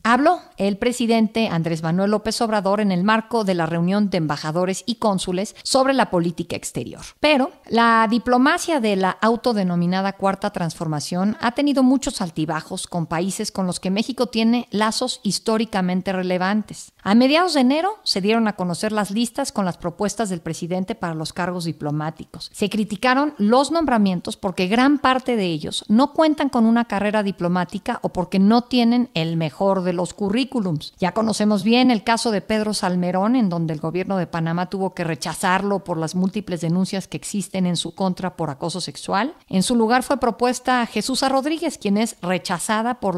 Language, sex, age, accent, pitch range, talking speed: Spanish, female, 50-69, Mexican, 180-235 Hz, 175 wpm